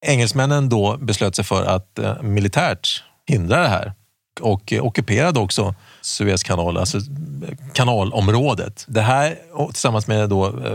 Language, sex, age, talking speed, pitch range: Swedish, male, 40-59, 115 wpm, 100-130 Hz